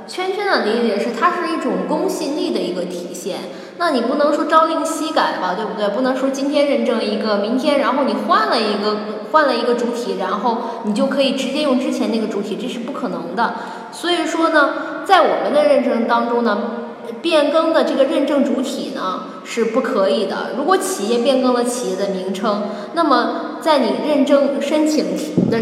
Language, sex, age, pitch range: Chinese, female, 10-29, 220-285 Hz